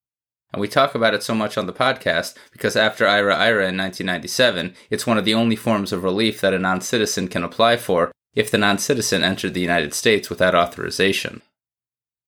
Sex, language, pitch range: male, English, 95-115 Hz